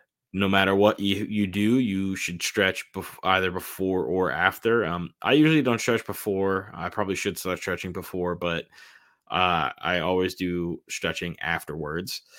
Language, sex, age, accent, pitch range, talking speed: English, male, 20-39, American, 85-100 Hz, 160 wpm